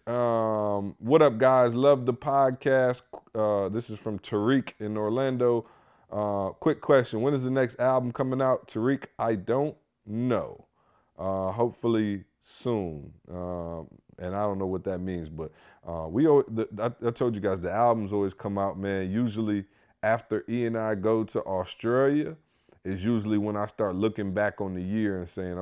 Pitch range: 95-115 Hz